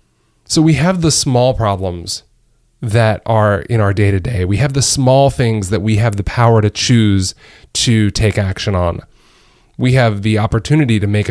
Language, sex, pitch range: English, male, 100-120 Hz